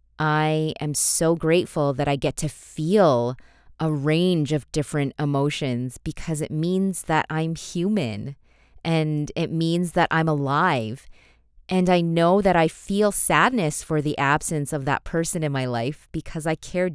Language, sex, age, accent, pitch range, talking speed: English, female, 20-39, American, 135-170 Hz, 160 wpm